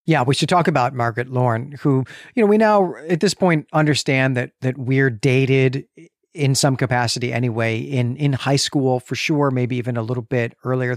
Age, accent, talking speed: 40-59, American, 195 wpm